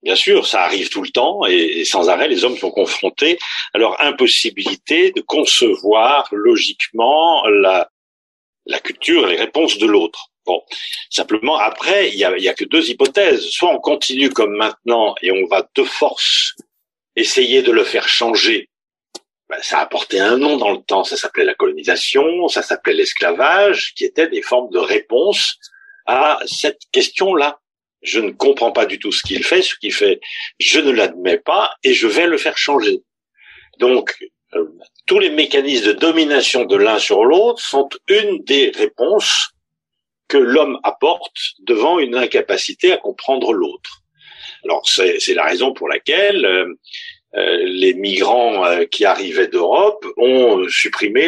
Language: French